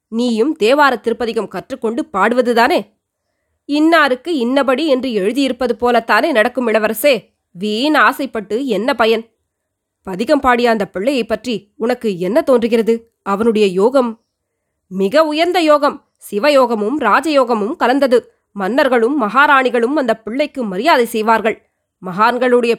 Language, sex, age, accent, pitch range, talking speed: Tamil, female, 20-39, native, 225-295 Hz, 105 wpm